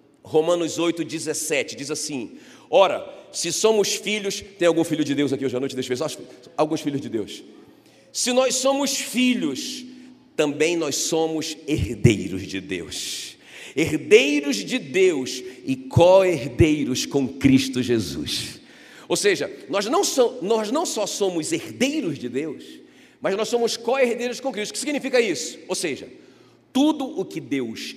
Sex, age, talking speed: male, 40-59, 145 wpm